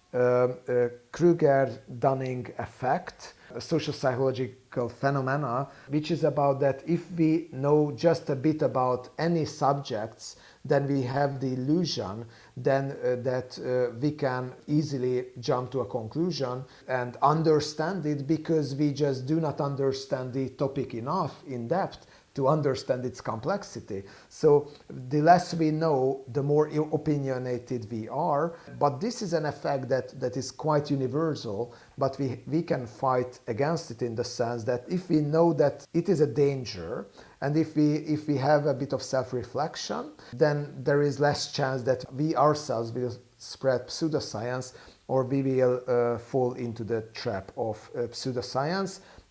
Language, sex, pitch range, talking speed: English, male, 125-150 Hz, 150 wpm